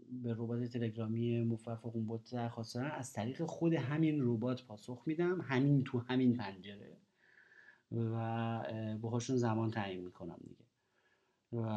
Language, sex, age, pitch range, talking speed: Persian, male, 30-49, 115-145 Hz, 115 wpm